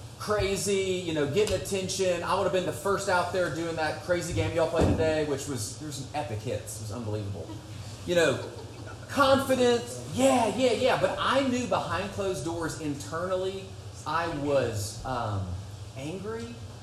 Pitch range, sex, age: 110-165 Hz, male, 30-49